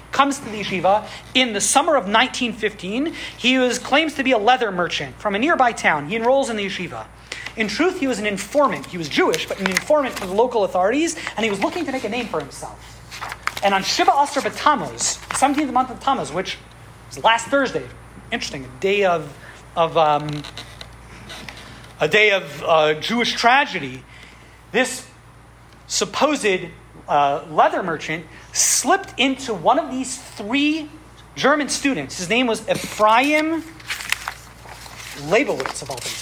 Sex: male